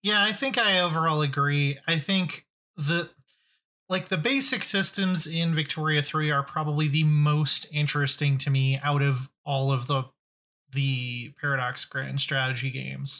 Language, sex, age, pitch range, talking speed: English, male, 30-49, 140-170 Hz, 150 wpm